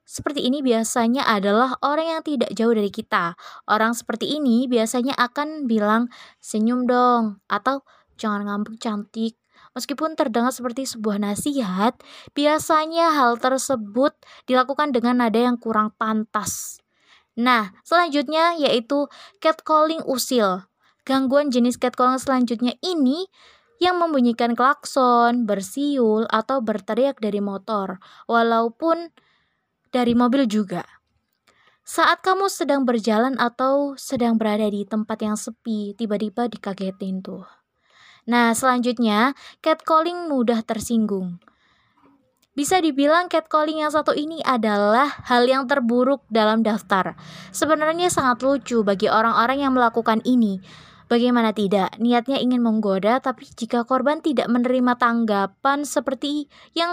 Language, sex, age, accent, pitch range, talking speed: Indonesian, female, 20-39, native, 220-285 Hz, 115 wpm